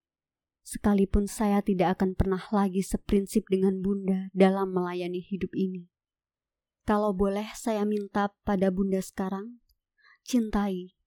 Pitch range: 185-215 Hz